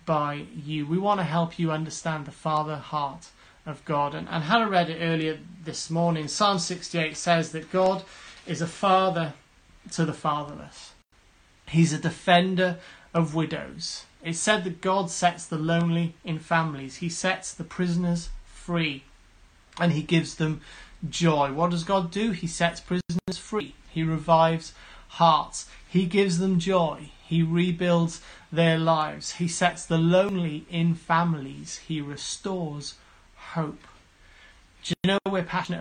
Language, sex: English, male